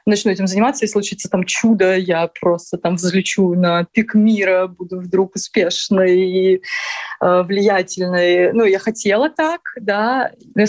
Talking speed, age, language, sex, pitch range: 140 wpm, 20-39, Russian, female, 190-225 Hz